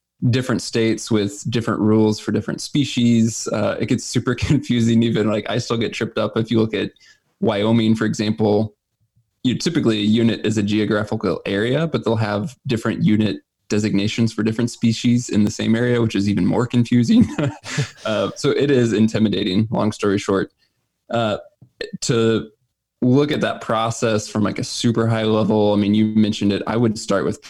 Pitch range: 105-120 Hz